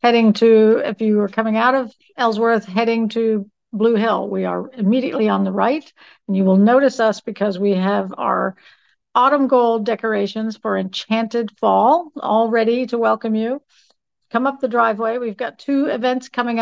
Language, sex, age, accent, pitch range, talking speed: English, female, 50-69, American, 210-255 Hz, 175 wpm